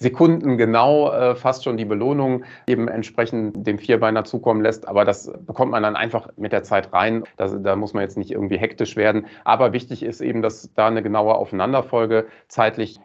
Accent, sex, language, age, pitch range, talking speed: German, male, German, 40-59, 105-120 Hz, 195 wpm